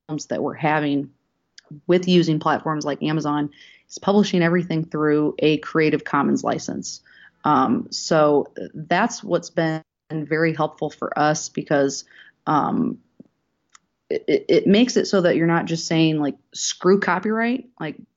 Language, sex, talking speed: English, female, 135 wpm